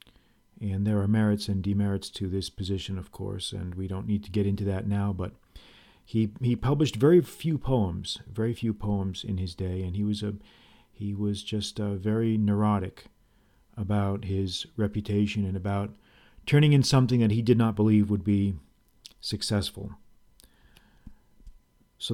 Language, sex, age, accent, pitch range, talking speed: English, male, 40-59, American, 95-110 Hz, 165 wpm